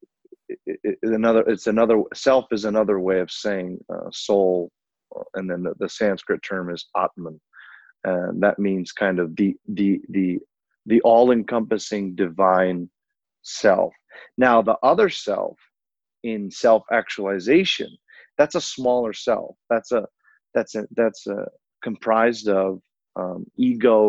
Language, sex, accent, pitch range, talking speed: English, male, American, 95-110 Hz, 135 wpm